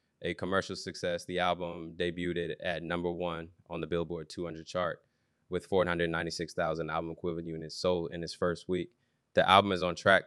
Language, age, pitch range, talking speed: English, 20-39, 80-90 Hz, 170 wpm